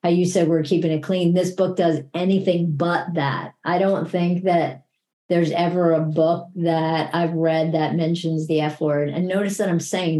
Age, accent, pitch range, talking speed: 50-69, American, 165-195 Hz, 195 wpm